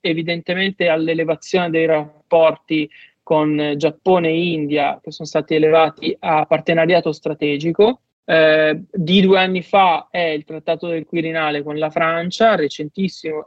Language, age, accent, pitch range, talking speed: Italian, 20-39, native, 160-185 Hz, 135 wpm